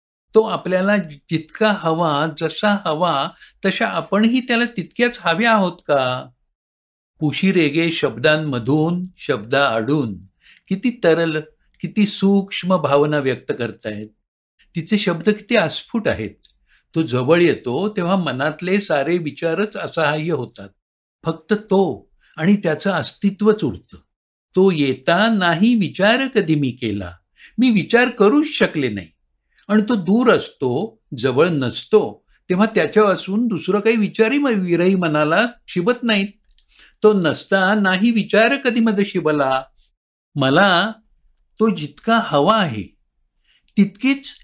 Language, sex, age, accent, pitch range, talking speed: Marathi, male, 60-79, native, 150-215 Hz, 115 wpm